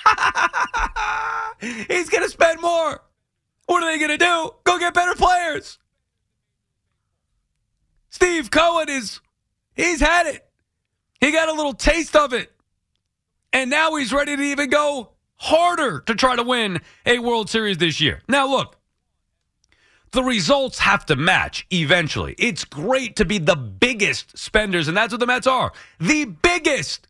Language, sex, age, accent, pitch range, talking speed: English, male, 30-49, American, 170-275 Hz, 150 wpm